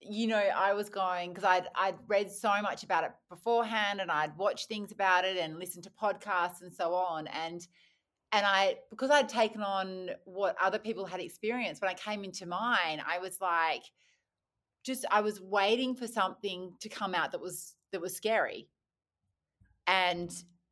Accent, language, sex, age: Australian, English, female, 30-49